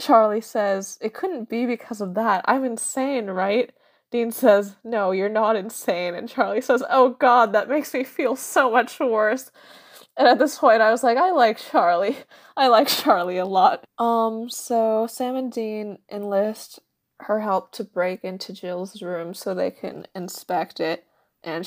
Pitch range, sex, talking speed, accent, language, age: 195-245 Hz, female, 175 wpm, American, English, 20-39